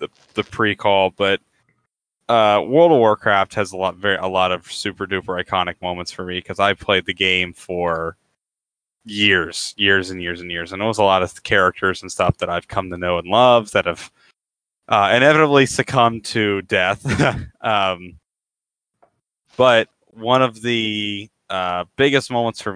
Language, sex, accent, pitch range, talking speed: English, male, American, 95-120 Hz, 170 wpm